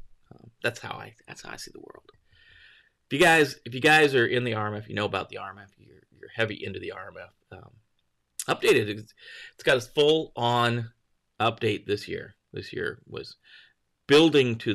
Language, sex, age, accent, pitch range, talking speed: English, male, 30-49, American, 95-120 Hz, 190 wpm